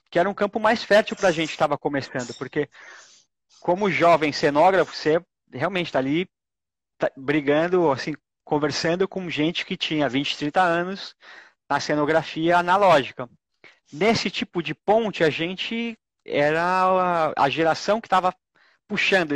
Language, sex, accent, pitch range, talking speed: Portuguese, male, Brazilian, 150-185 Hz, 145 wpm